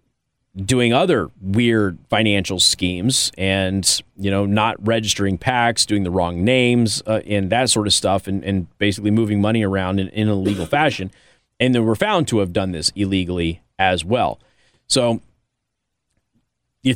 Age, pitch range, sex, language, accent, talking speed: 30-49, 95-120 Hz, male, English, American, 155 wpm